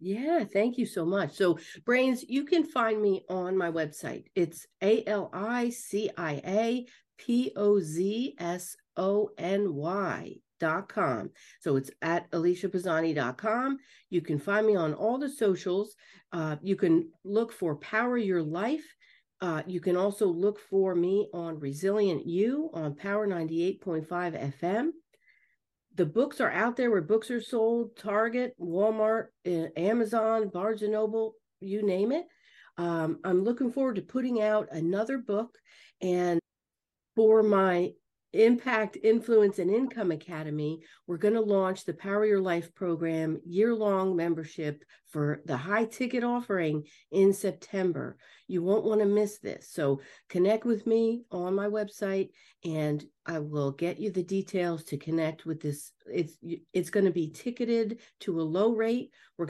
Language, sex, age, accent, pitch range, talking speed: English, female, 50-69, American, 170-220 Hz, 140 wpm